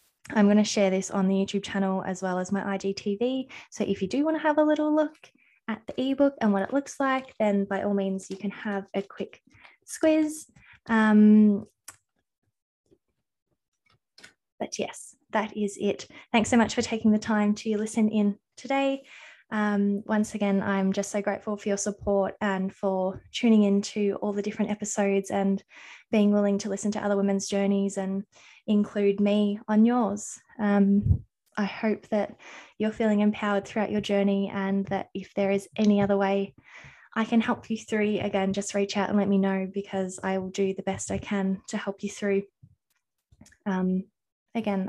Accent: Australian